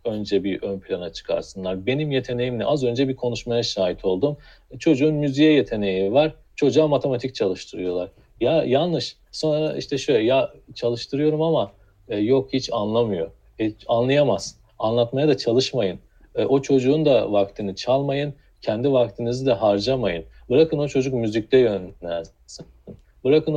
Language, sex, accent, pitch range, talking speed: Turkish, male, native, 110-160 Hz, 135 wpm